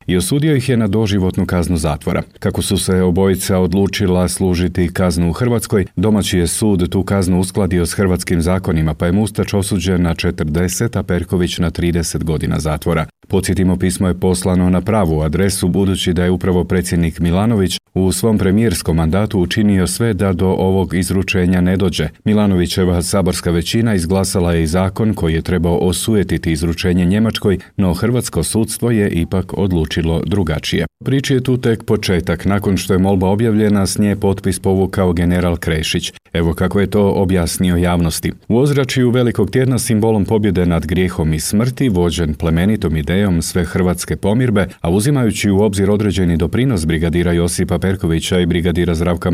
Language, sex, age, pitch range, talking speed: Croatian, male, 40-59, 85-105 Hz, 160 wpm